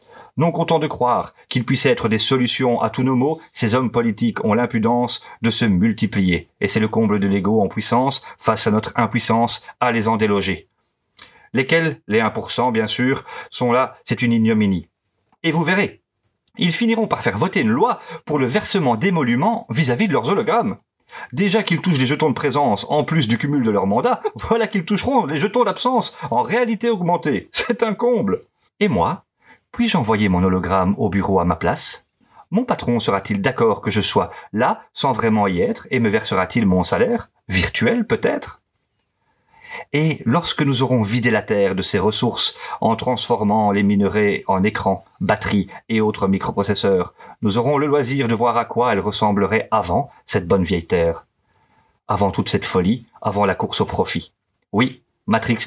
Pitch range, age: 105-155 Hz, 40-59